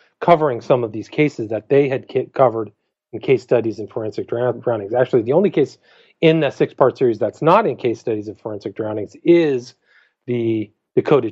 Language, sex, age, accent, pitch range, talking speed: English, male, 40-59, American, 110-140 Hz, 180 wpm